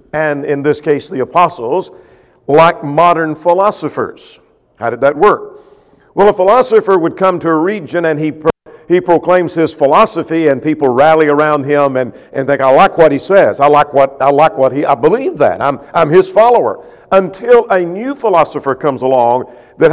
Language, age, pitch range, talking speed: English, 50-69, 145-205 Hz, 185 wpm